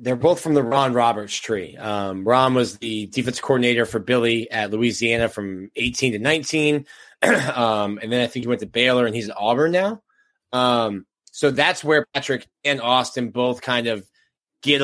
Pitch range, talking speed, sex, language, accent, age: 110-130 Hz, 185 wpm, male, English, American, 20-39